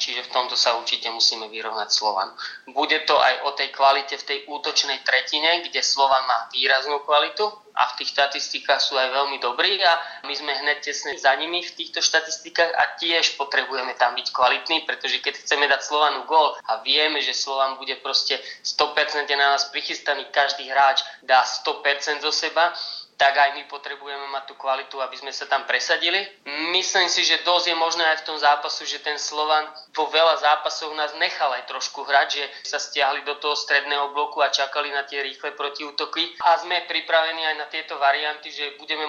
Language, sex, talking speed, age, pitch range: Slovak, male, 190 wpm, 20-39, 140-155 Hz